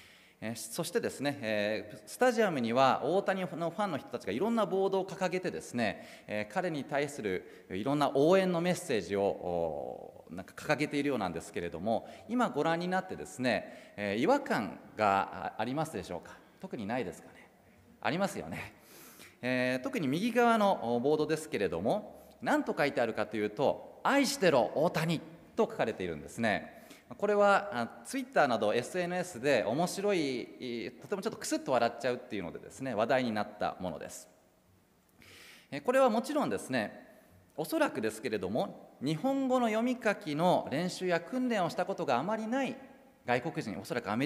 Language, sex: Japanese, male